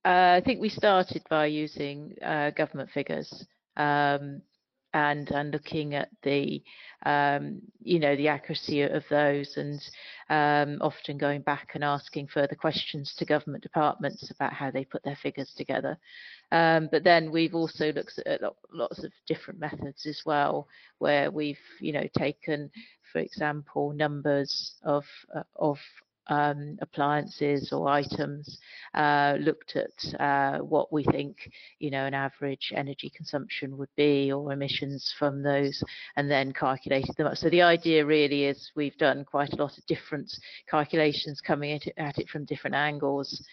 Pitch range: 140-155 Hz